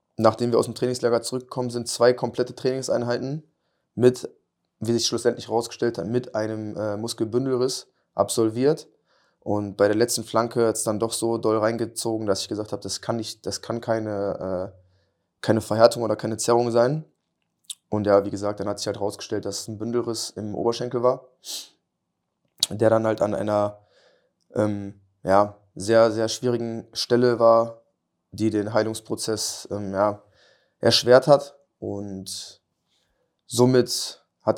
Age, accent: 20-39, German